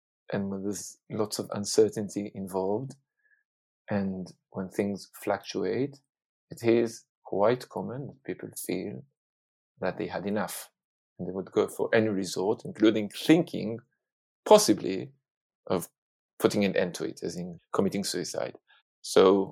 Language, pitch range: English, 100-135 Hz